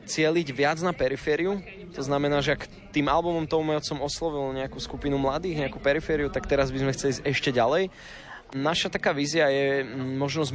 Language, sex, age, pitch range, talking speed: Slovak, male, 20-39, 120-145 Hz, 175 wpm